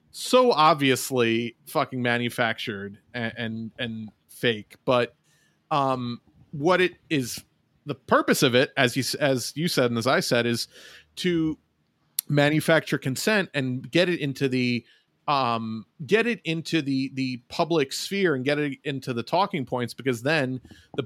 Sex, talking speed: male, 150 wpm